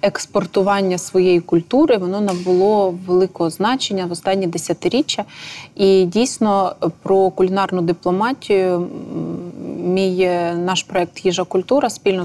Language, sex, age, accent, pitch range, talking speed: Ukrainian, female, 20-39, native, 175-205 Hz, 105 wpm